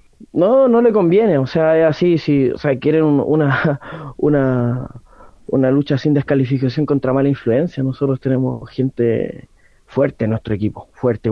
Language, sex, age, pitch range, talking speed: Spanish, male, 30-49, 130-165 Hz, 160 wpm